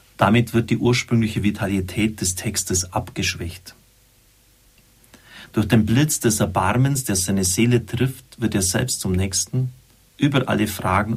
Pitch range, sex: 100-120 Hz, male